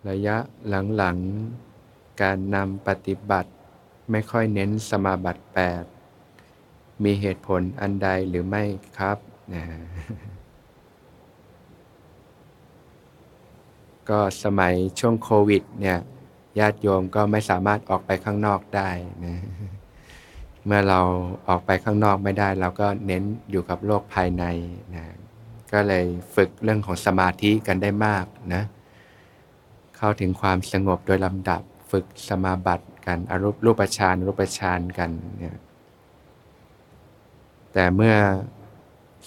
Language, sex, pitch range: Thai, male, 90-105 Hz